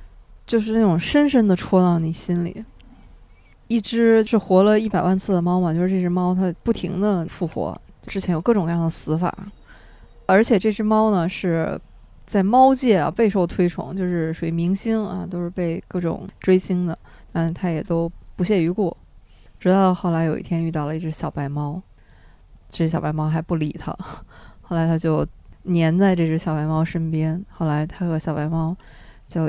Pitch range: 160-185 Hz